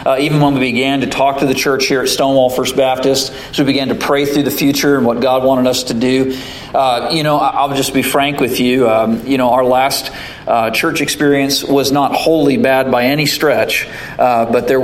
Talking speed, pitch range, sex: 230 wpm, 125-140 Hz, male